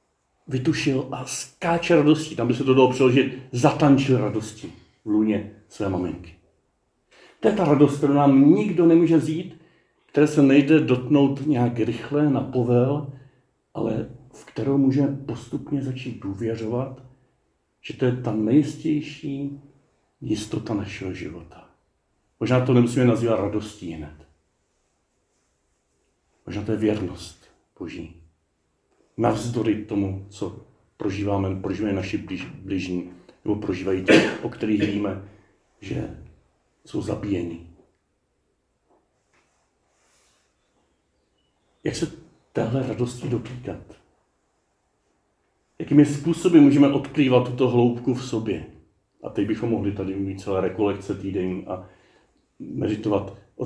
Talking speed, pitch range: 115 wpm, 95-140 Hz